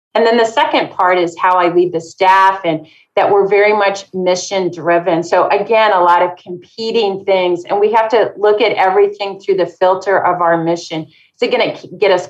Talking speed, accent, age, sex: 215 wpm, American, 40-59, female